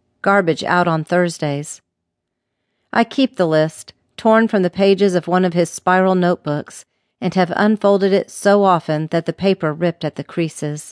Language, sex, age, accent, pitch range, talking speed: English, female, 40-59, American, 160-200 Hz, 170 wpm